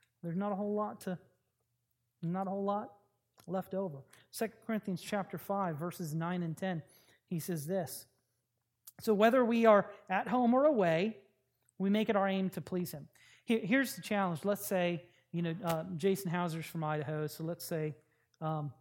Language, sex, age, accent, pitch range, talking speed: English, male, 30-49, American, 165-215 Hz, 175 wpm